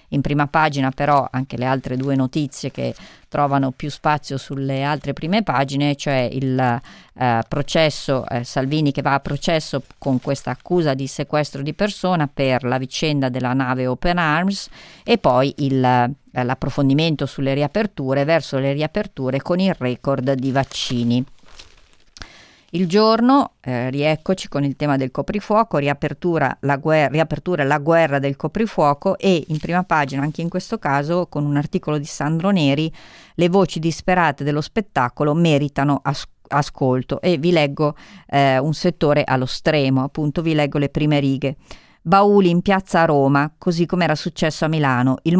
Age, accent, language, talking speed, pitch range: 40-59, native, Italian, 160 wpm, 140-170 Hz